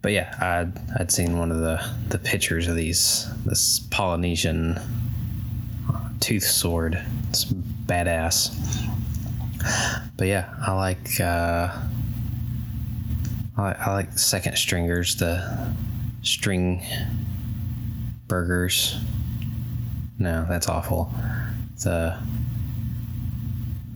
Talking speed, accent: 90 wpm, American